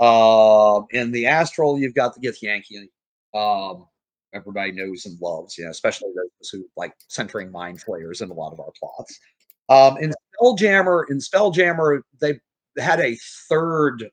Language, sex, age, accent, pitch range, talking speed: English, male, 30-49, American, 105-145 Hz, 155 wpm